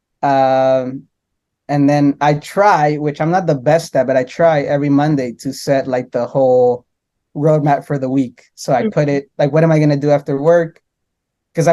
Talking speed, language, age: 200 wpm, English, 20-39